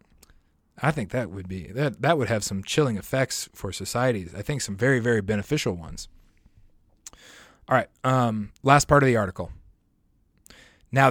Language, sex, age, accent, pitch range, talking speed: English, male, 30-49, American, 100-125 Hz, 160 wpm